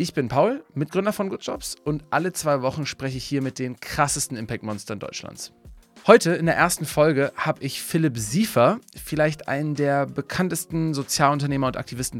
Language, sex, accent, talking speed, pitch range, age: German, male, German, 170 wpm, 125-150 Hz, 30-49